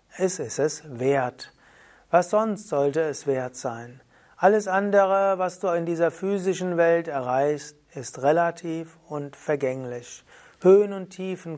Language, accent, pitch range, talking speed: German, German, 140-175 Hz, 135 wpm